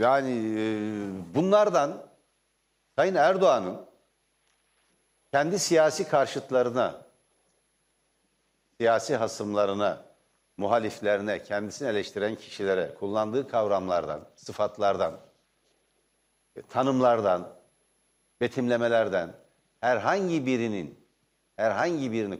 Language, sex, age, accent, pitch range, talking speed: Turkish, male, 60-79, native, 110-155 Hz, 60 wpm